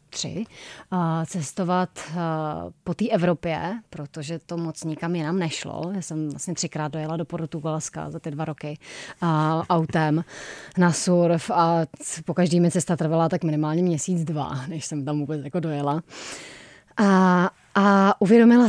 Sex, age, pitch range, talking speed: female, 30-49, 155-195 Hz, 140 wpm